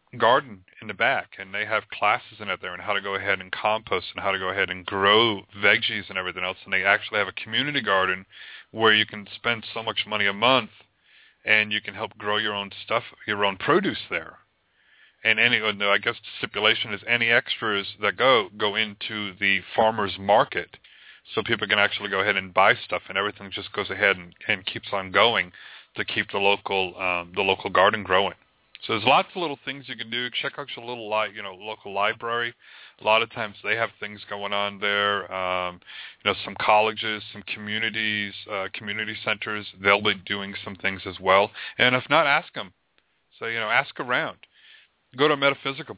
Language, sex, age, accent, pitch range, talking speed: English, male, 30-49, American, 100-110 Hz, 210 wpm